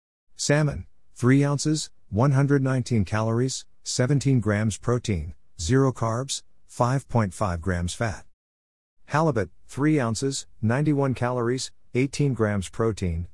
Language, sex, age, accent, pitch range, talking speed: English, male, 50-69, American, 90-135 Hz, 95 wpm